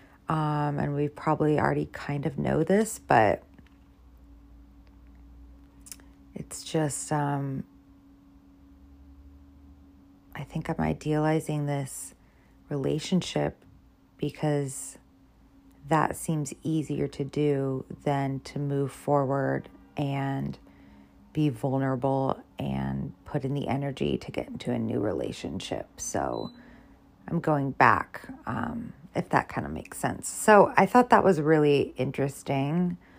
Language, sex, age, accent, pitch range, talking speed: English, female, 30-49, American, 90-150 Hz, 110 wpm